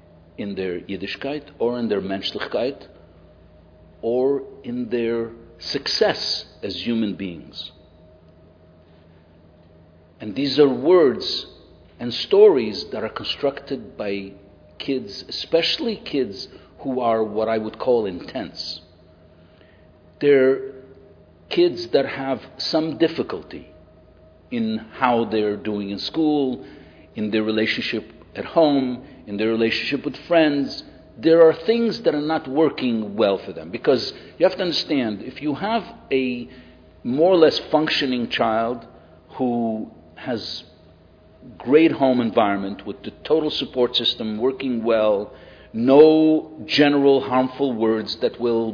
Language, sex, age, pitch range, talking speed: English, male, 50-69, 95-135 Hz, 120 wpm